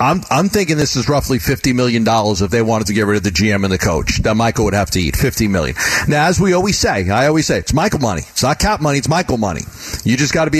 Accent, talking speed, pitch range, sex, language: American, 295 wpm, 120-165 Hz, male, English